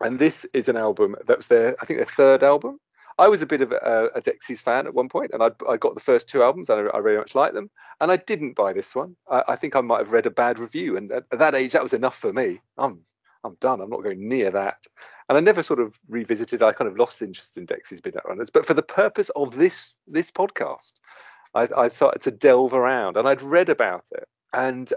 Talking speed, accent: 260 wpm, British